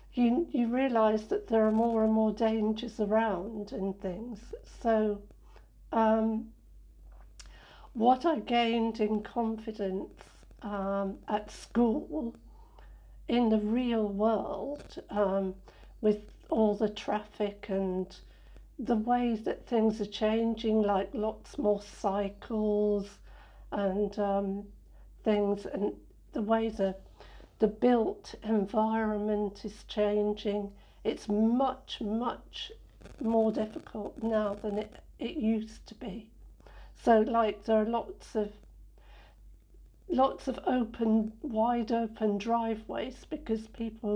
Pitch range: 205-230 Hz